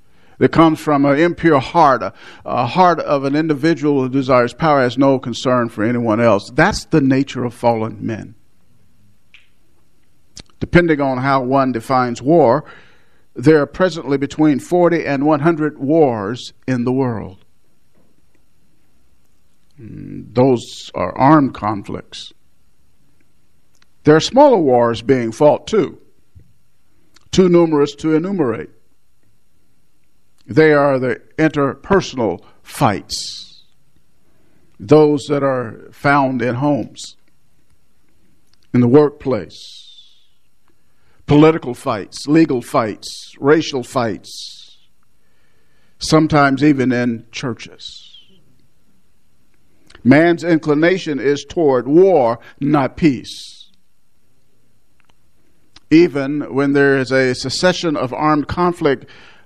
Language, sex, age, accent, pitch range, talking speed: English, male, 50-69, American, 125-155 Hz, 100 wpm